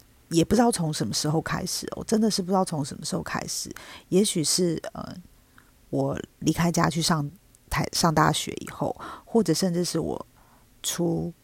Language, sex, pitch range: Chinese, female, 155-200 Hz